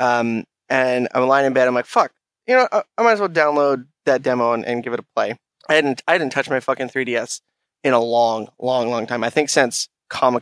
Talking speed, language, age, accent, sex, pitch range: 240 wpm, English, 20-39, American, male, 120-150 Hz